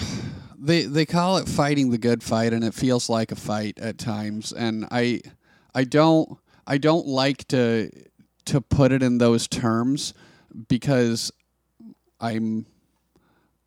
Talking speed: 140 wpm